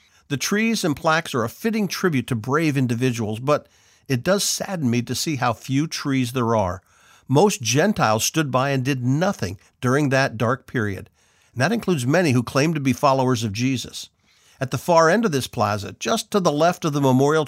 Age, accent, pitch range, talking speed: 50-69, American, 120-160 Hz, 205 wpm